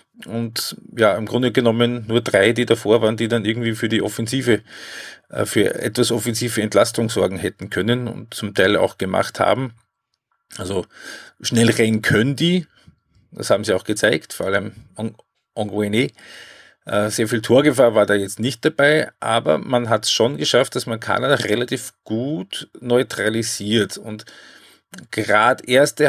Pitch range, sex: 110-125 Hz, male